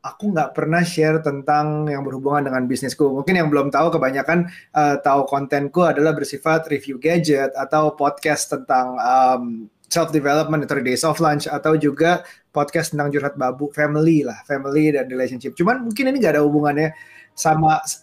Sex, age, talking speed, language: male, 20-39, 165 wpm, Indonesian